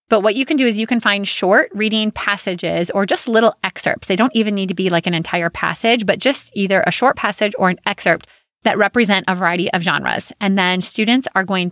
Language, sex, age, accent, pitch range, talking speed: English, female, 20-39, American, 175-220 Hz, 235 wpm